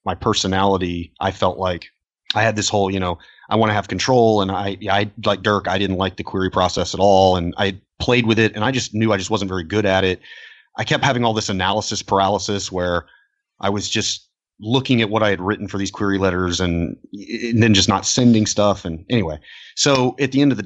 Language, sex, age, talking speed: English, male, 30-49, 235 wpm